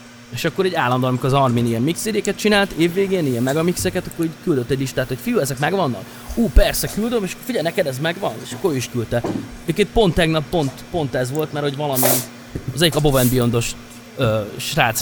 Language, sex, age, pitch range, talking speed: Hungarian, male, 30-49, 120-155 Hz, 195 wpm